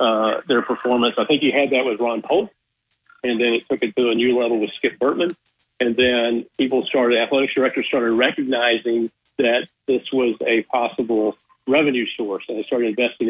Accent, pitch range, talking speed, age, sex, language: American, 115-135 Hz, 190 wpm, 50-69, male, English